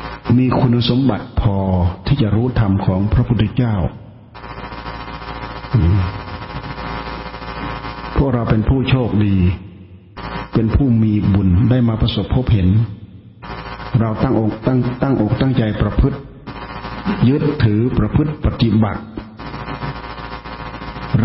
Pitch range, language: 110-125 Hz, Thai